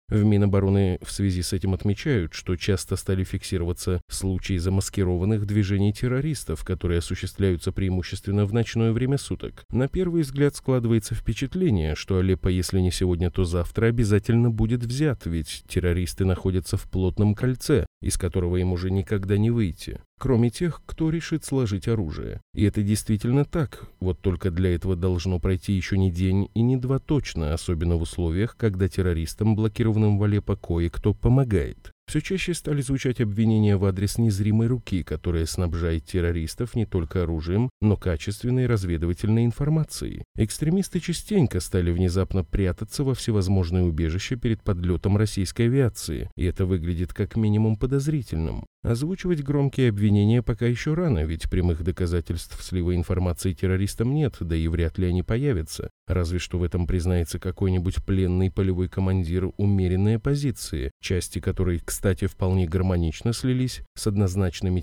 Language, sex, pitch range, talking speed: Russian, male, 90-115 Hz, 145 wpm